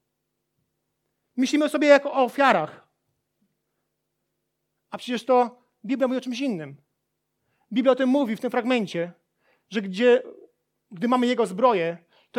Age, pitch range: 40-59, 230-275 Hz